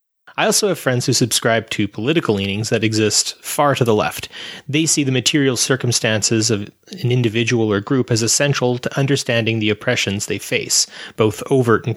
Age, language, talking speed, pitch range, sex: 30-49, English, 180 wpm, 115-150 Hz, male